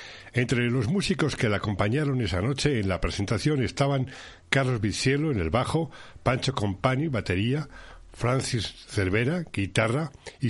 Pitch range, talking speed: 110-140 Hz, 135 wpm